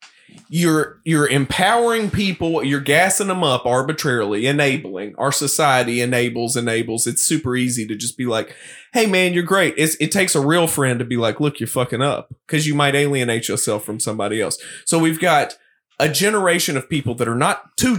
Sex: male